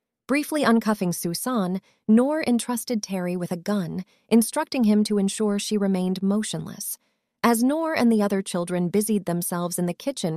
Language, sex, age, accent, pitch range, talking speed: English, female, 30-49, American, 190-230 Hz, 155 wpm